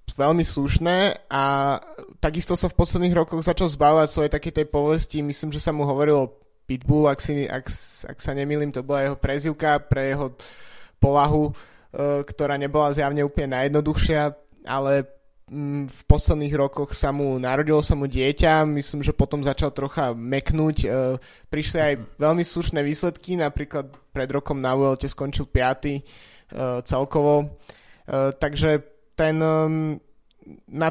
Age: 20-39